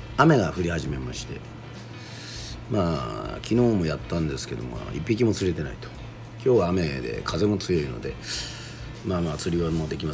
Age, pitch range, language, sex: 40-59, 80-115 Hz, Japanese, male